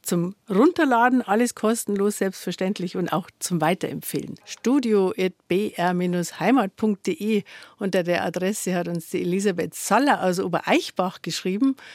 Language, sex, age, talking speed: German, female, 50-69, 110 wpm